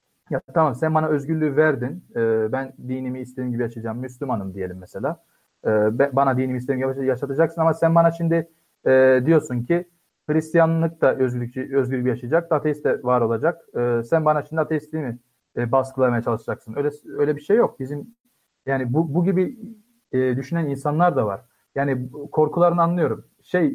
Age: 40-59